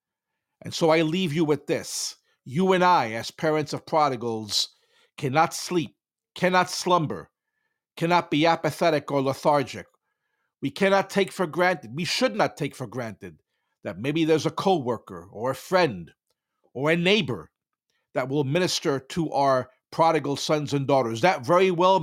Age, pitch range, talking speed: 50-69, 145-185 Hz, 155 wpm